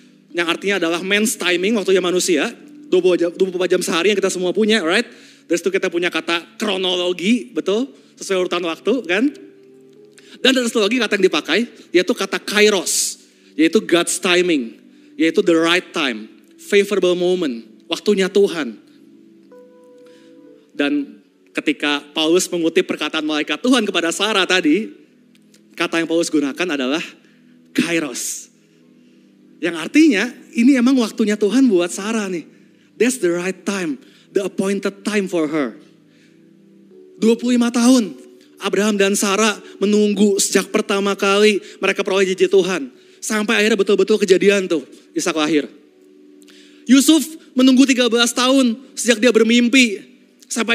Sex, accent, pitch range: male, native, 175-245 Hz